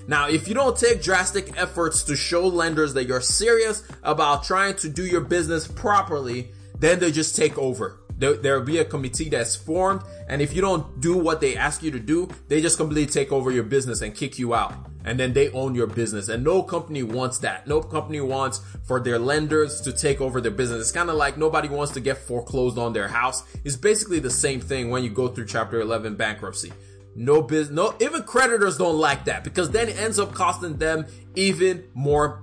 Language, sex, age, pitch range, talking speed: English, male, 20-39, 120-165 Hz, 215 wpm